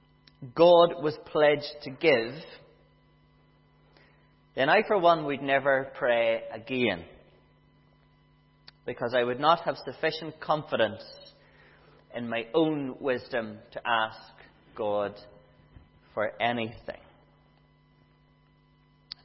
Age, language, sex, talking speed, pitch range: 30-49, English, male, 95 wpm, 135-180 Hz